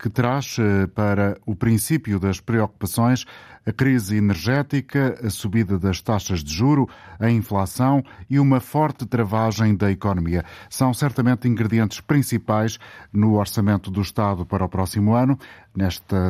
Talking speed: 135 wpm